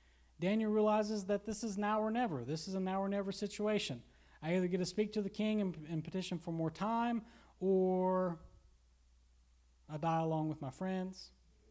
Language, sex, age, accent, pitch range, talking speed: English, male, 30-49, American, 130-190 Hz, 185 wpm